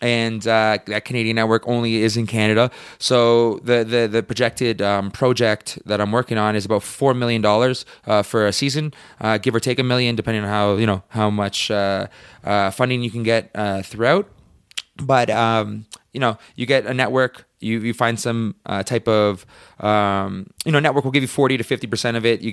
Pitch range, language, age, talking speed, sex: 105-120 Hz, English, 20-39, 210 wpm, male